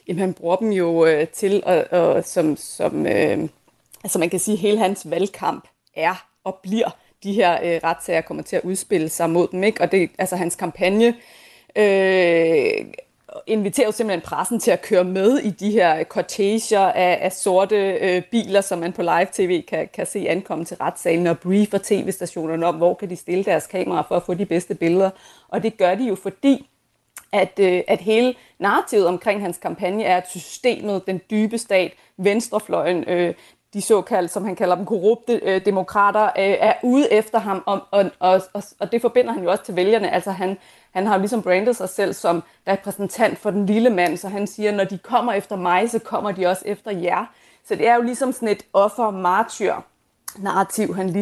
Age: 30-49